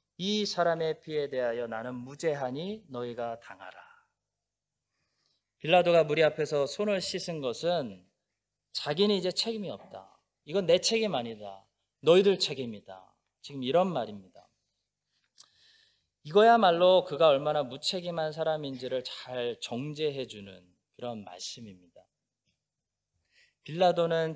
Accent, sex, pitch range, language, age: native, male, 130-205 Hz, Korean, 20-39